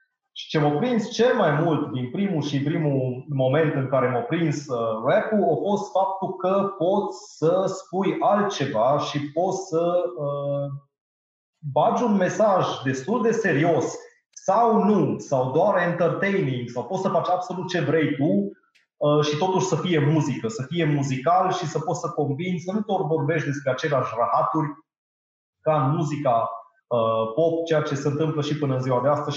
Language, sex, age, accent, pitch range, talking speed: Romanian, male, 30-49, native, 130-175 Hz, 170 wpm